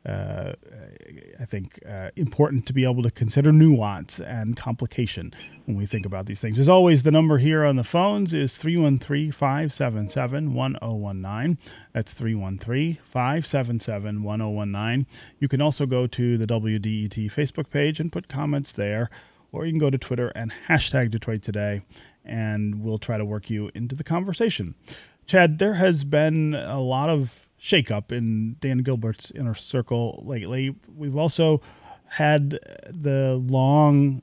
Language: English